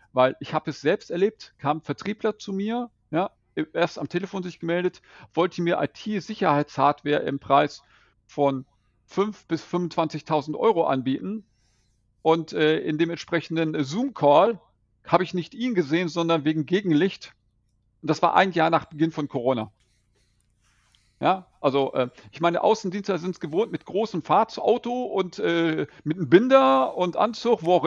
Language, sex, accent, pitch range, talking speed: German, male, German, 135-185 Hz, 155 wpm